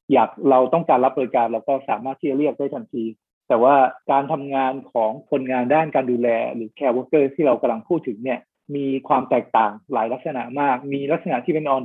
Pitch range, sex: 130-165 Hz, male